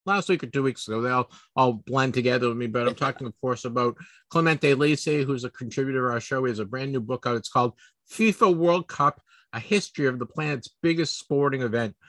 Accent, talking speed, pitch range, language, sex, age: American, 230 wpm, 120-150 Hz, English, male, 50-69